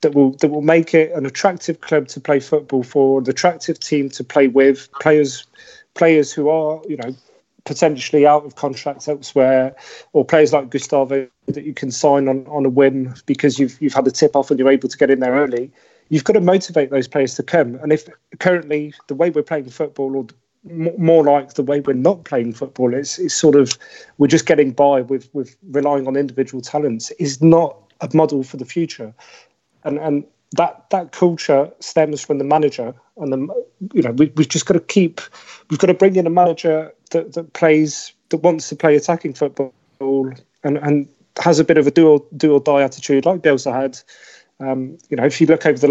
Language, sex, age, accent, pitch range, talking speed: English, male, 30-49, British, 135-160 Hz, 210 wpm